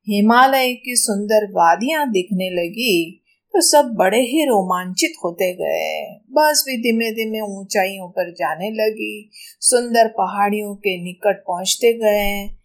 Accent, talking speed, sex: native, 130 wpm, female